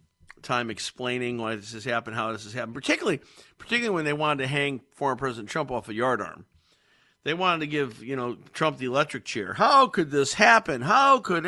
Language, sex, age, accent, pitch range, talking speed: English, male, 50-69, American, 125-155 Hz, 210 wpm